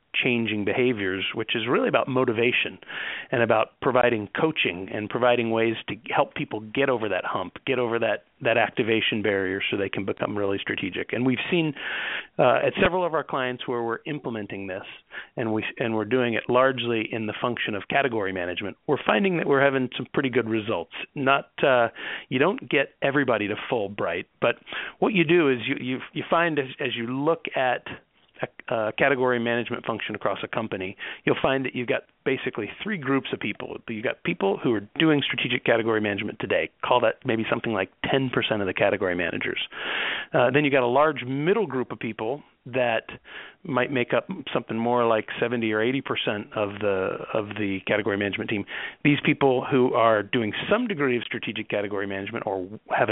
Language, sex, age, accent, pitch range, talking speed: English, male, 40-59, American, 110-135 Hz, 190 wpm